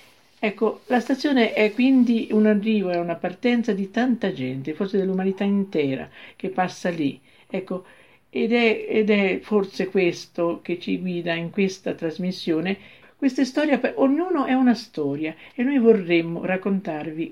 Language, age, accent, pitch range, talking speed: Italian, 50-69, native, 170-215 Hz, 150 wpm